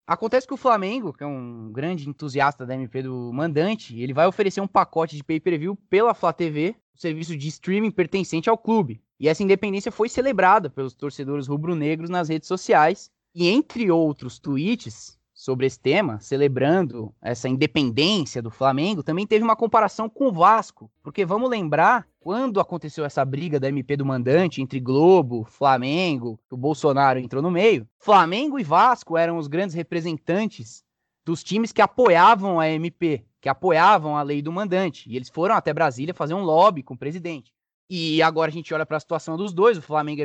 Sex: male